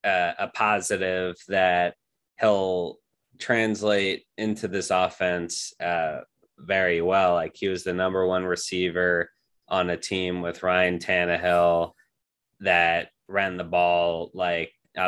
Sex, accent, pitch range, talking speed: male, American, 90-100 Hz, 120 wpm